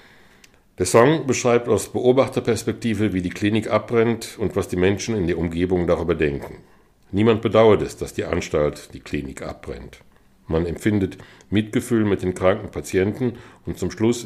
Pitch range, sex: 85-110 Hz, male